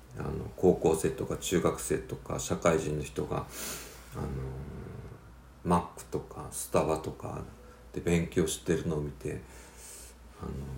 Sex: male